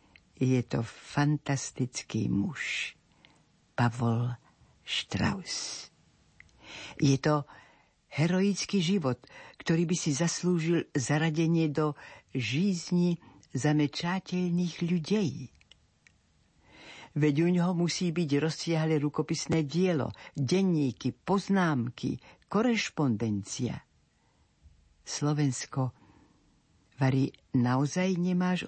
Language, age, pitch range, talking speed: Slovak, 60-79, 125-170 Hz, 70 wpm